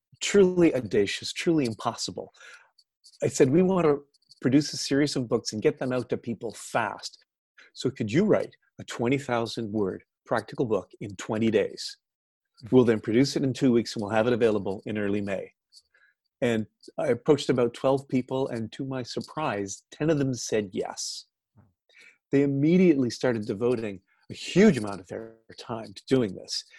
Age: 40-59